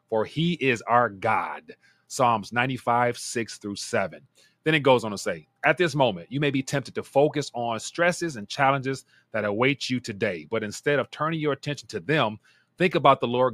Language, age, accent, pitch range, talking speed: English, 30-49, American, 115-150 Hz, 200 wpm